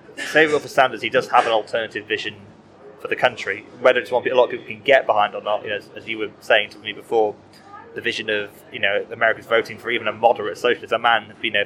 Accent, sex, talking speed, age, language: British, male, 245 wpm, 20-39, English